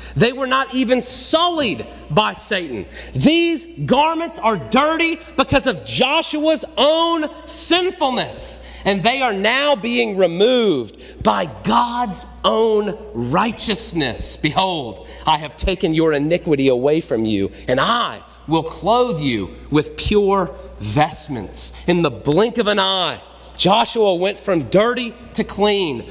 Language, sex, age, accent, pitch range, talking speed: English, male, 40-59, American, 165-270 Hz, 125 wpm